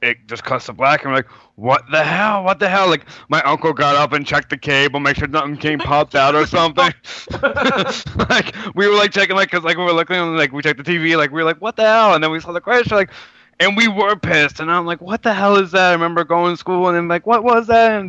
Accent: American